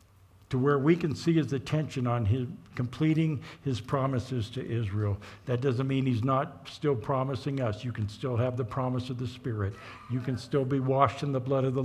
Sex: male